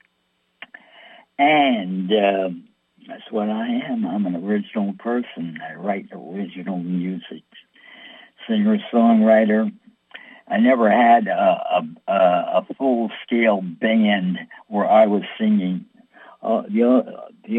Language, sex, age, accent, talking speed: English, male, 60-79, American, 100 wpm